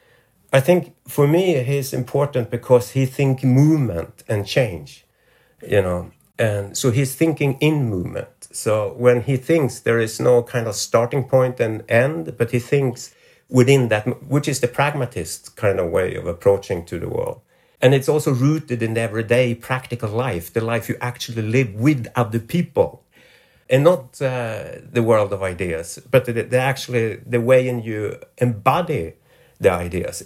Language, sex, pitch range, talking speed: English, male, 115-140 Hz, 165 wpm